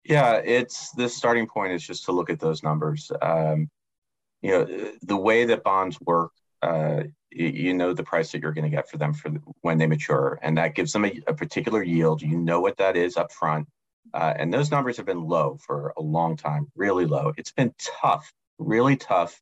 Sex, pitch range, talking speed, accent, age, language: male, 80-95 Hz, 215 wpm, American, 30-49, English